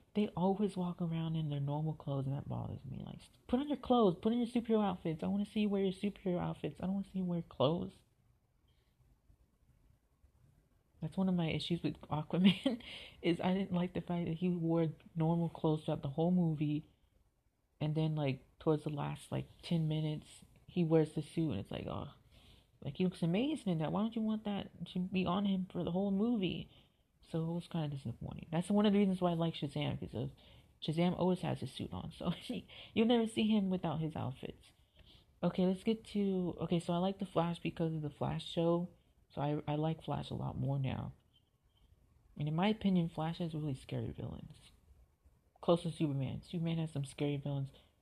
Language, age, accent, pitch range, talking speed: English, 30-49, American, 150-190 Hz, 210 wpm